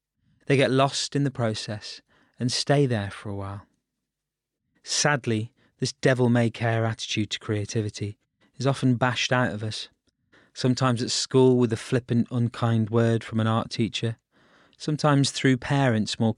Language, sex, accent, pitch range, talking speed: English, male, British, 110-130 Hz, 155 wpm